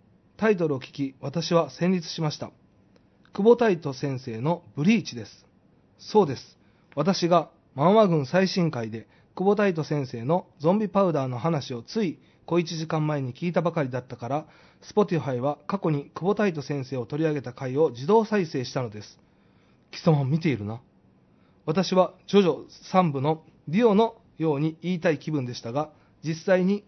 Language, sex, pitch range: Japanese, male, 140-185 Hz